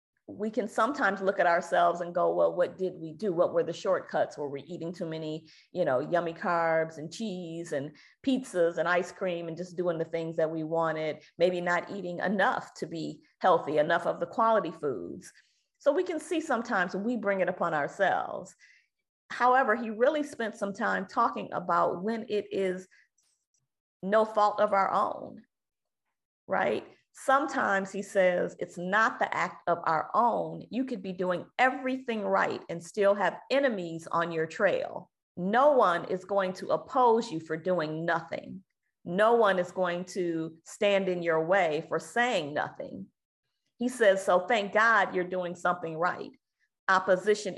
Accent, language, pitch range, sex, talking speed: American, English, 170-220 Hz, female, 170 wpm